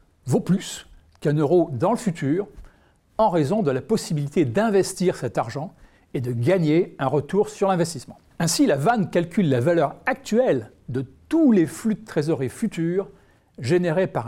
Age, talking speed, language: 60-79, 160 wpm, French